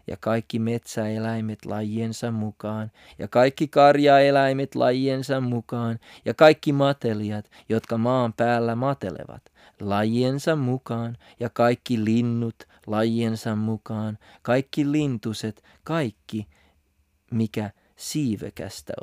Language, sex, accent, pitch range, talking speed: Finnish, male, native, 105-130 Hz, 90 wpm